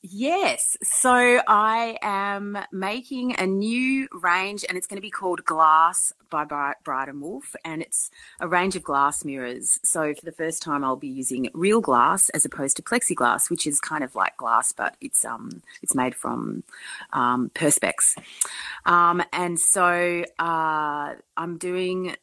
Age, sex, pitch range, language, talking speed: 30-49, female, 140-195 Hz, English, 160 wpm